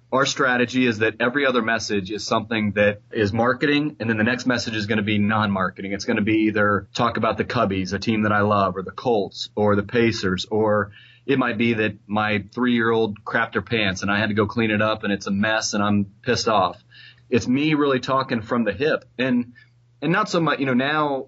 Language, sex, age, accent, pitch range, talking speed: English, male, 30-49, American, 105-125 Hz, 235 wpm